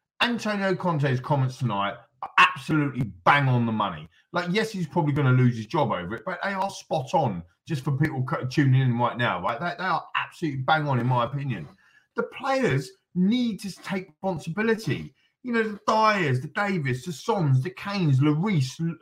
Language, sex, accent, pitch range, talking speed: English, male, British, 135-195 Hz, 190 wpm